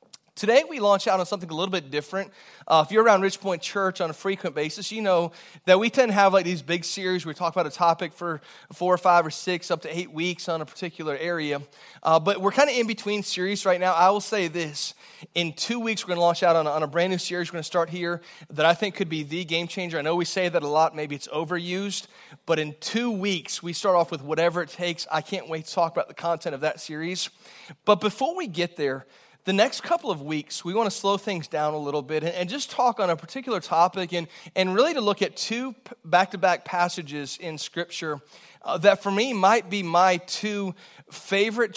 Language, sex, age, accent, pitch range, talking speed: English, male, 30-49, American, 165-200 Hz, 245 wpm